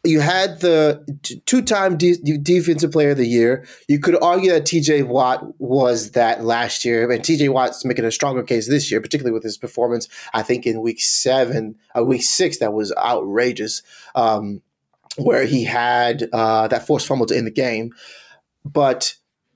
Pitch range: 115-160 Hz